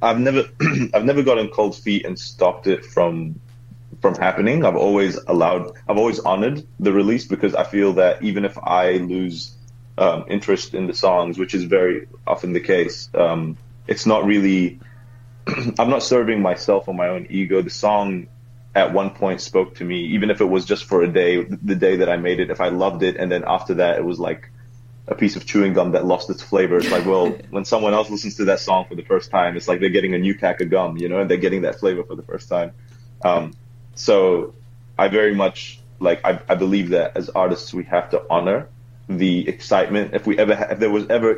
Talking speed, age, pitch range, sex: 225 wpm, 20-39, 90-120 Hz, male